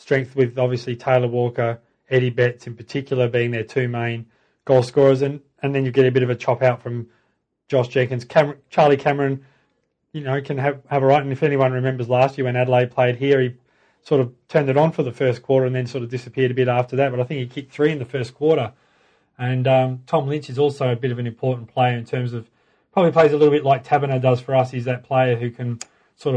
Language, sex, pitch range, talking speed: English, male, 120-135 Hz, 245 wpm